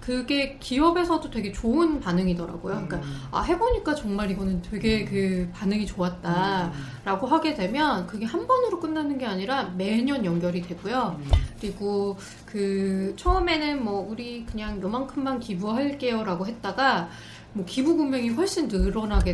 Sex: female